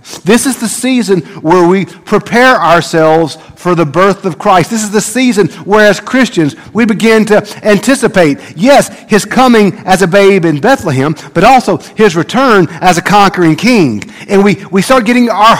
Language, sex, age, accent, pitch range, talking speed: English, male, 50-69, American, 160-215 Hz, 175 wpm